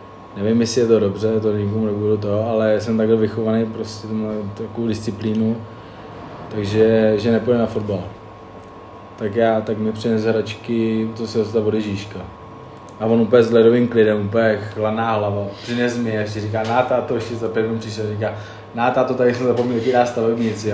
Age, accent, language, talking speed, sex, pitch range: 20-39, native, Czech, 170 wpm, male, 105-115 Hz